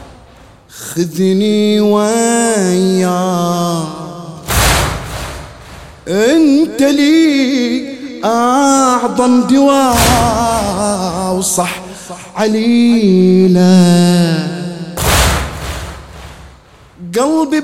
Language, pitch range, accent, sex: English, 175-235 Hz, Lebanese, male